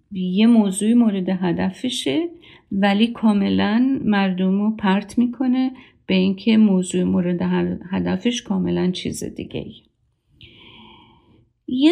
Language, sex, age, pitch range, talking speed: Persian, female, 50-69, 185-225 Hz, 95 wpm